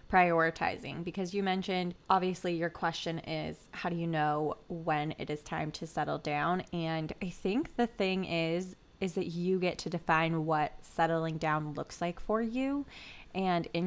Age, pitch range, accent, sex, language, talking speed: 20-39, 170-200 Hz, American, female, English, 175 wpm